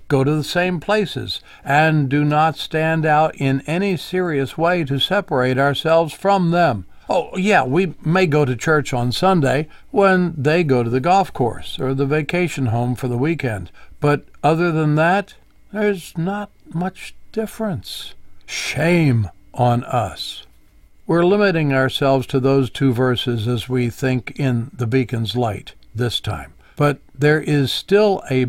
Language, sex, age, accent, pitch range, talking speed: English, male, 60-79, American, 130-175 Hz, 155 wpm